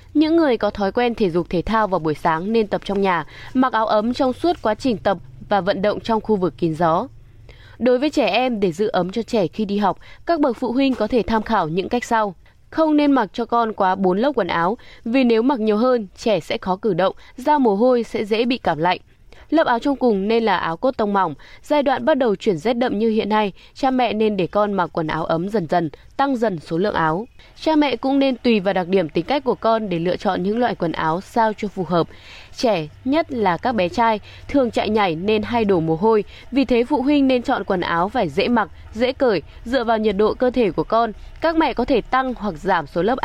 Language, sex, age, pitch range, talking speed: Vietnamese, female, 20-39, 185-250 Hz, 260 wpm